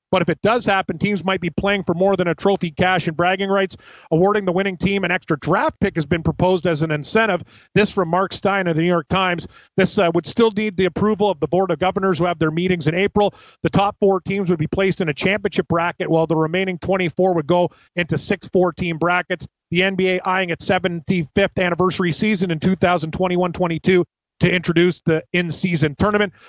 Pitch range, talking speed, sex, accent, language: 170-190 Hz, 215 wpm, male, American, English